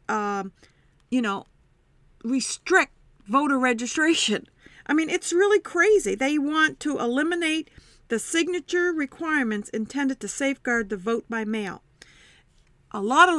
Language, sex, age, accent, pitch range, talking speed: English, female, 50-69, American, 210-275 Hz, 125 wpm